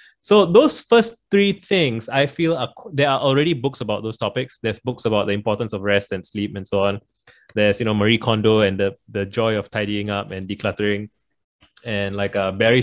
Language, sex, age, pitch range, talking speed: English, male, 20-39, 105-135 Hz, 210 wpm